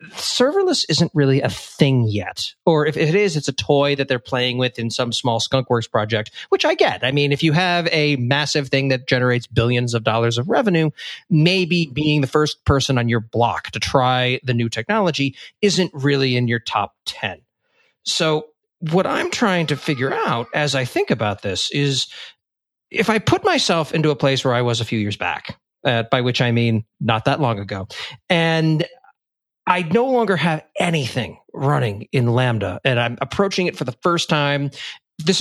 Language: English